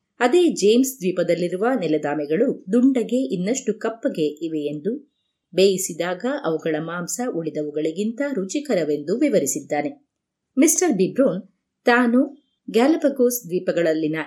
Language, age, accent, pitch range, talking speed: Kannada, 30-49, native, 165-265 Hz, 85 wpm